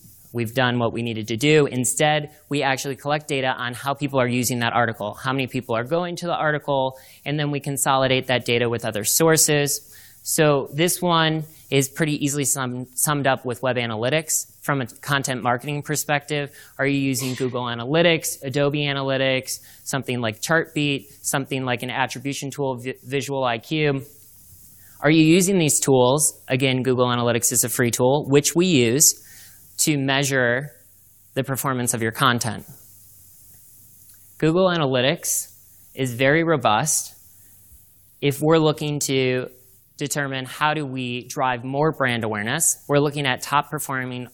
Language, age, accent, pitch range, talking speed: English, 20-39, American, 120-145 Hz, 150 wpm